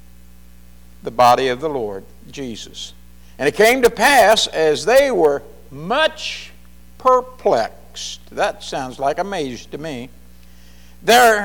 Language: English